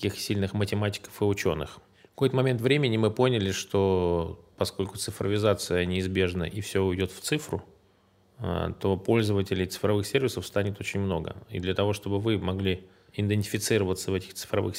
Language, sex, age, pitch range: Russian, male, 20-39, 95-105 Hz